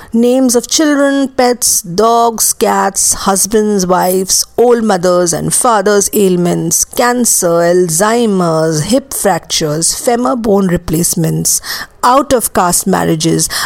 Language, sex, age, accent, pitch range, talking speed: English, female, 50-69, Indian, 175-250 Hz, 95 wpm